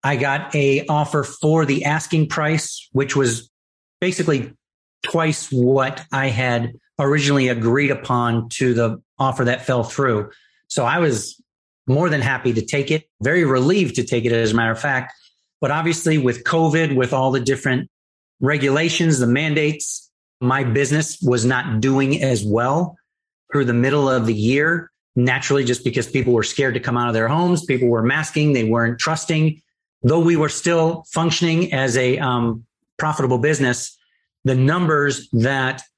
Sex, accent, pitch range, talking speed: male, American, 125-155 Hz, 165 wpm